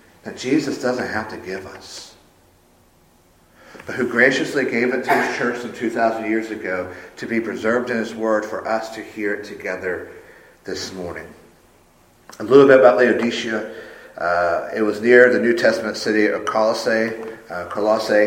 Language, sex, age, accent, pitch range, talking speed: English, male, 50-69, American, 110-125 Hz, 165 wpm